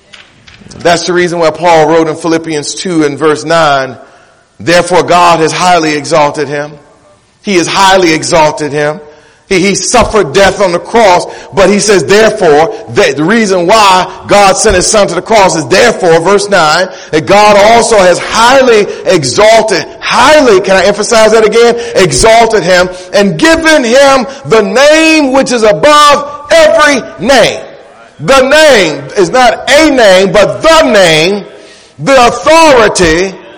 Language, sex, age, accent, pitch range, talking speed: English, male, 40-59, American, 185-275 Hz, 150 wpm